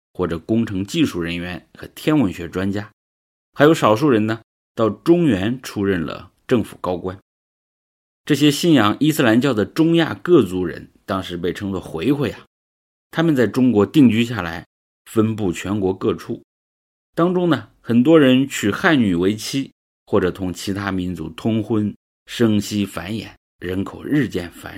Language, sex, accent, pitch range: English, male, Chinese, 85-120 Hz